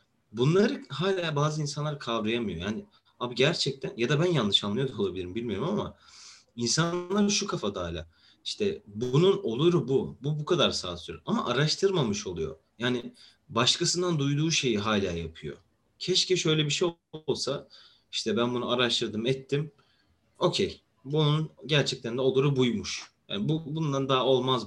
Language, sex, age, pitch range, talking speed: Turkish, male, 30-49, 115-155 Hz, 145 wpm